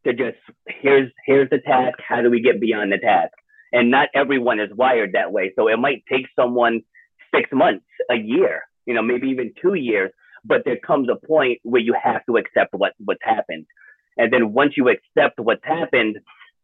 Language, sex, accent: English, male, American